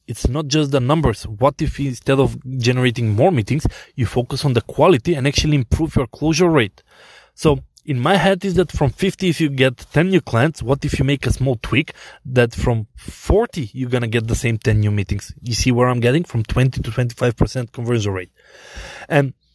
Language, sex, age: English, male, 20-39